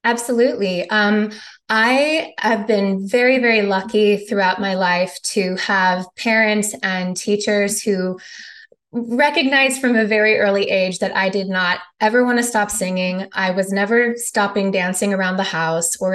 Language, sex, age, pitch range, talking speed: English, female, 20-39, 185-230 Hz, 150 wpm